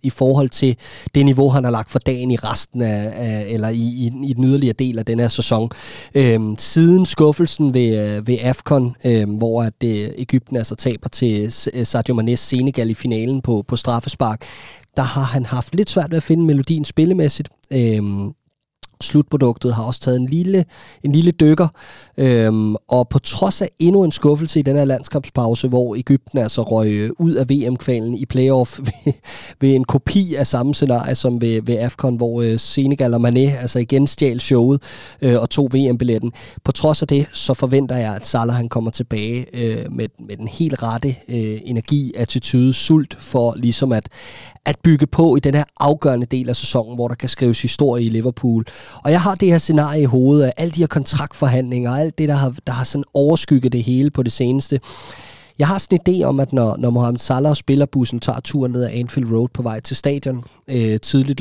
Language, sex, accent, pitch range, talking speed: Danish, male, native, 120-140 Hz, 200 wpm